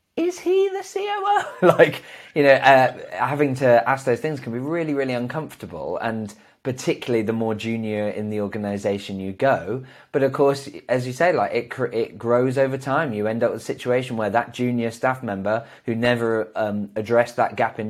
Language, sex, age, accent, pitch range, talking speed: English, male, 20-39, British, 105-130 Hz, 200 wpm